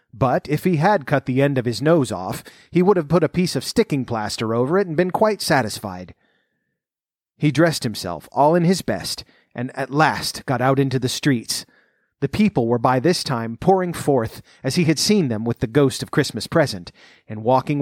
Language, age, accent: English, 30-49, American